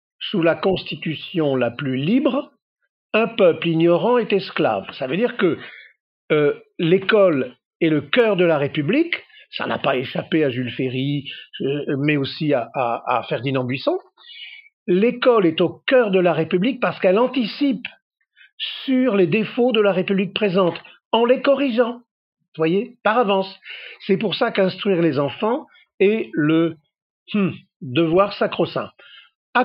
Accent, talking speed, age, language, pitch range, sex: French, 150 wpm, 50-69, French, 160-230 Hz, male